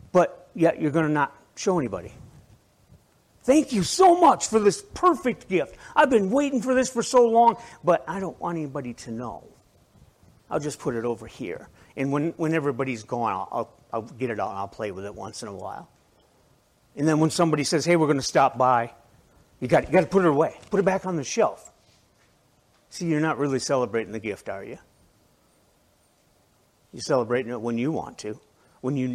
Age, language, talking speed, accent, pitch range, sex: 50-69, English, 205 wpm, American, 120-180 Hz, male